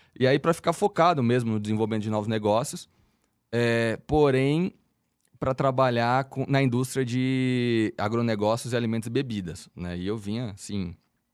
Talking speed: 155 wpm